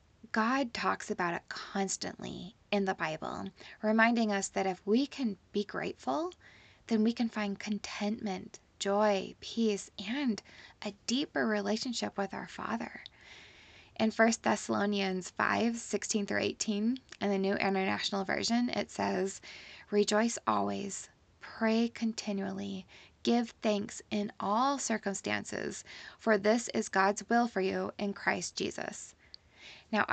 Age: 10-29